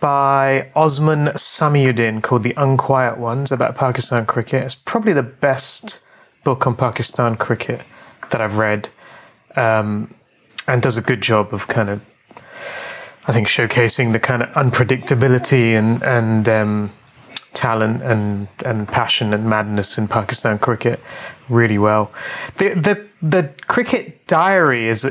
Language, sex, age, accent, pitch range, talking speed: English, male, 30-49, British, 120-150 Hz, 135 wpm